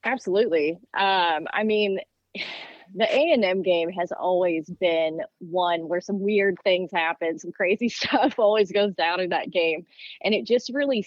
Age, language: 20-39, English